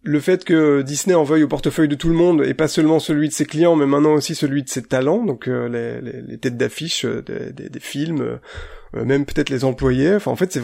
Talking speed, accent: 260 wpm, French